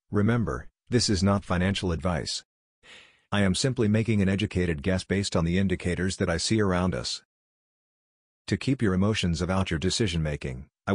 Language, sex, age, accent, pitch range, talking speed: English, male, 50-69, American, 90-105 Hz, 165 wpm